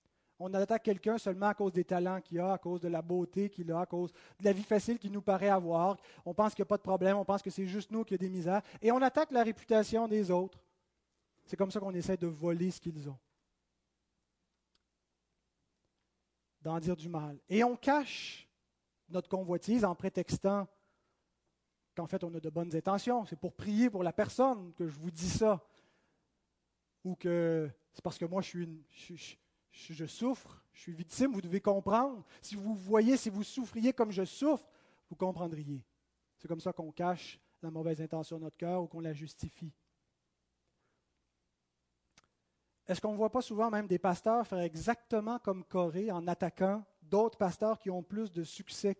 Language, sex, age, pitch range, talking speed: French, male, 30-49, 165-205 Hz, 195 wpm